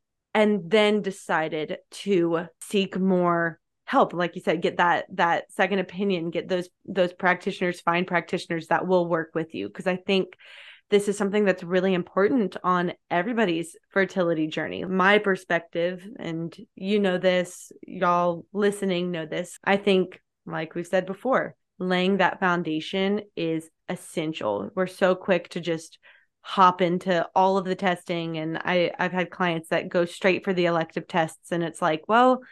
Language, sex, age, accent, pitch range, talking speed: English, female, 20-39, American, 175-205 Hz, 160 wpm